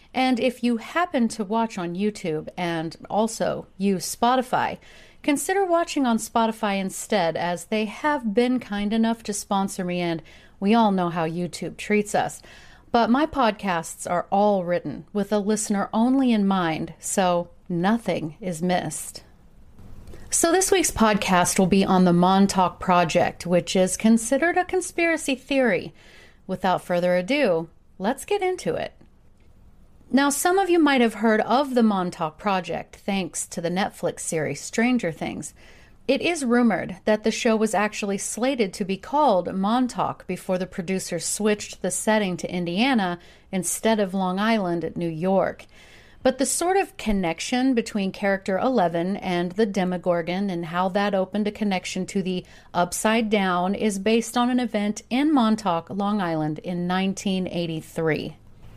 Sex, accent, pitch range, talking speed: female, American, 180-235 Hz, 155 wpm